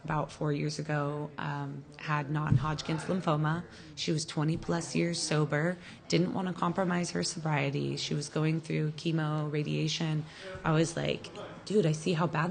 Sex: female